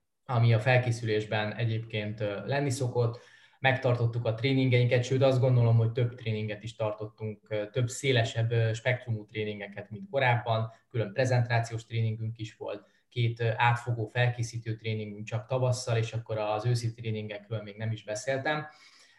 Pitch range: 110-130 Hz